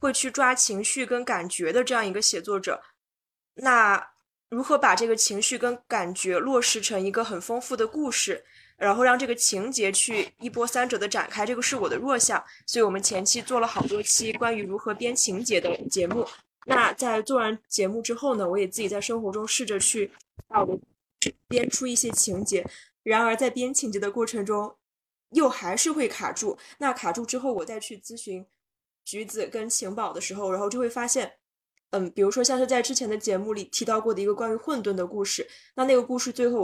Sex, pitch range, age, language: female, 205-250 Hz, 20-39, Chinese